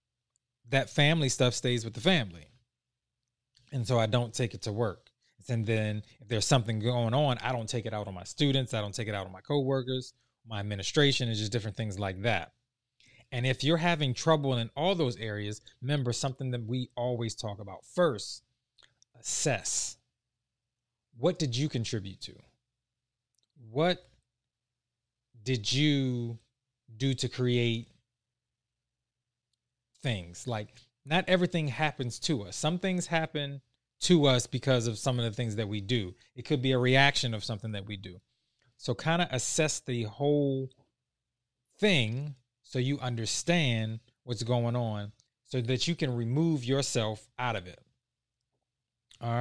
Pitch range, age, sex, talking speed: 120-135 Hz, 20-39, male, 155 wpm